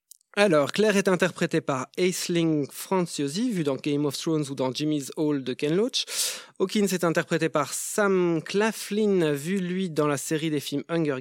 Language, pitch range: French, 155-210 Hz